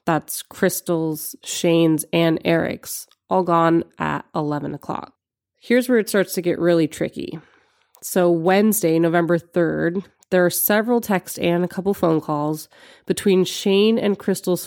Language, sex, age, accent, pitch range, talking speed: English, female, 30-49, American, 165-205 Hz, 145 wpm